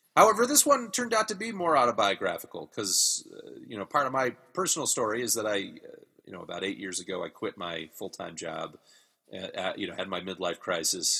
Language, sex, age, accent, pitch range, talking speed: English, male, 30-49, American, 90-145 Hz, 220 wpm